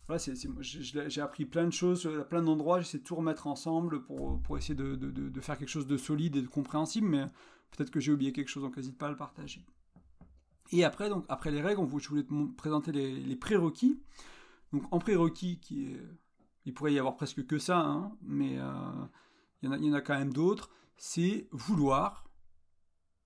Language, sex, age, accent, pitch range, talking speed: French, male, 40-59, French, 135-160 Hz, 215 wpm